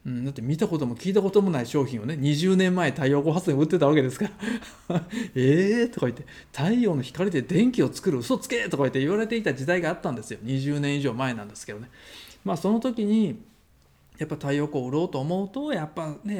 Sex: male